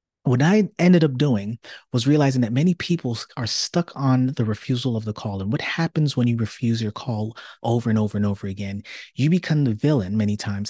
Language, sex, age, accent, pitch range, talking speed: English, male, 30-49, American, 110-145 Hz, 215 wpm